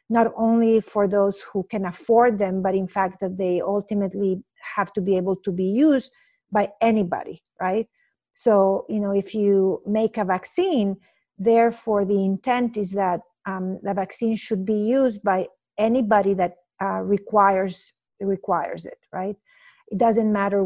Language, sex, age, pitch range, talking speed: English, female, 50-69, 190-225 Hz, 155 wpm